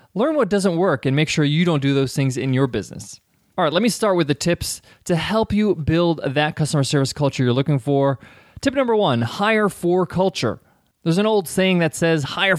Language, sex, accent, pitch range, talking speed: English, male, American, 140-195 Hz, 225 wpm